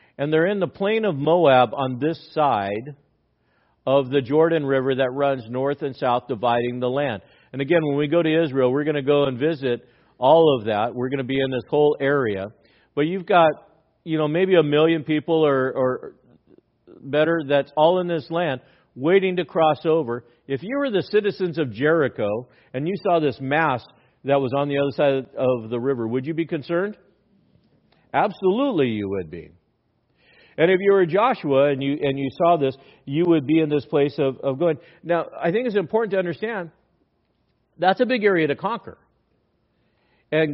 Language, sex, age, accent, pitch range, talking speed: English, male, 50-69, American, 135-180 Hz, 190 wpm